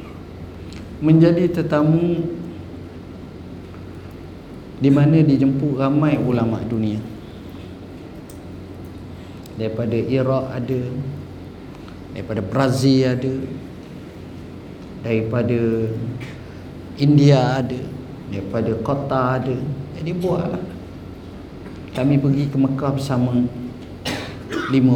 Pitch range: 110-160 Hz